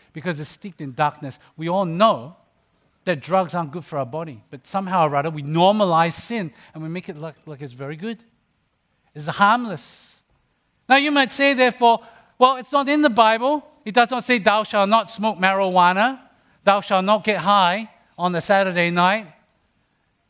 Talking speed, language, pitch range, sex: 185 wpm, English, 180-235 Hz, male